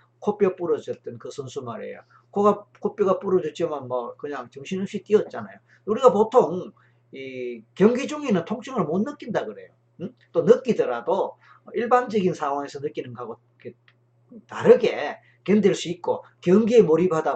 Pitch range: 150-220 Hz